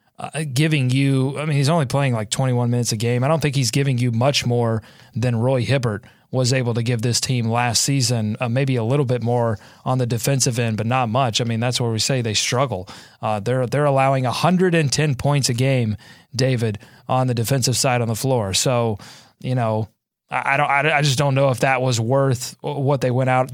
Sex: male